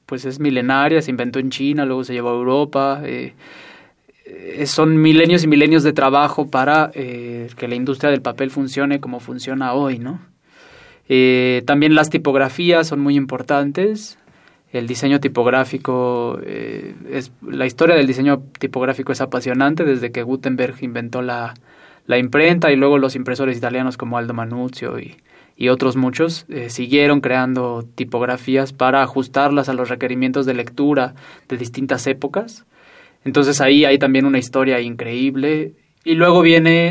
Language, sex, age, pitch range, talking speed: Spanish, male, 20-39, 125-145 Hz, 150 wpm